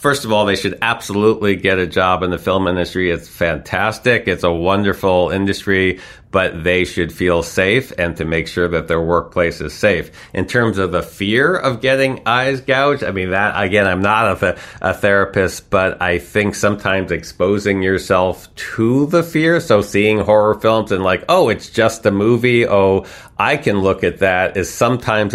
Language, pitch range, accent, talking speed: English, 95-115 Hz, American, 185 wpm